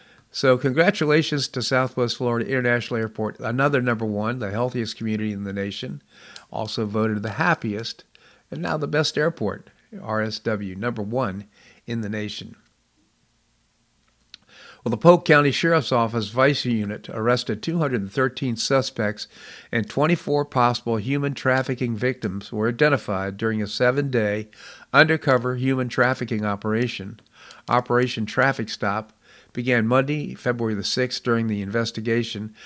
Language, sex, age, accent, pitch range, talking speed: English, male, 50-69, American, 105-130 Hz, 125 wpm